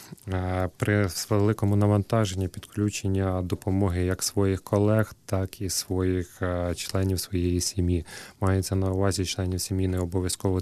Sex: male